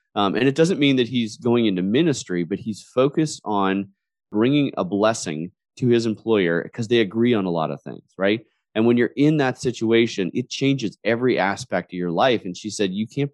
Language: English